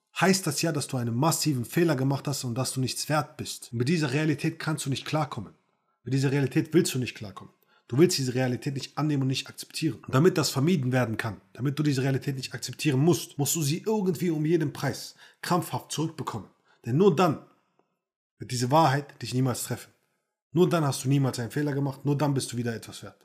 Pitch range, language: 125-155 Hz, German